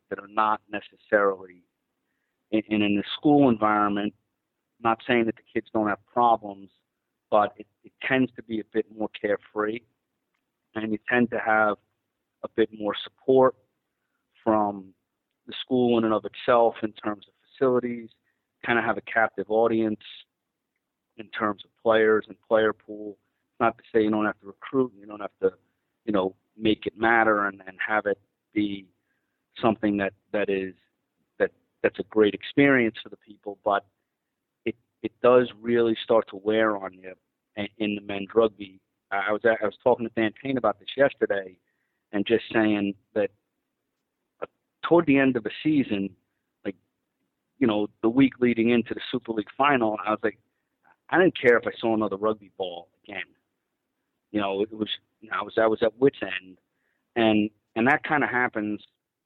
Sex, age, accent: male, 40-59, American